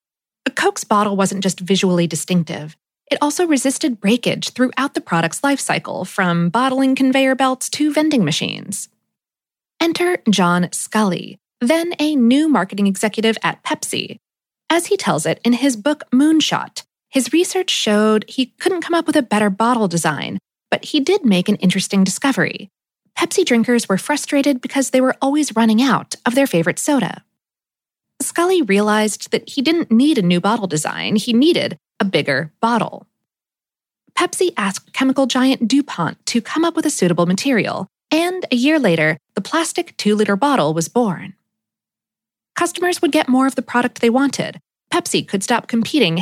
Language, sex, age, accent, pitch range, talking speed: English, female, 20-39, American, 200-295 Hz, 160 wpm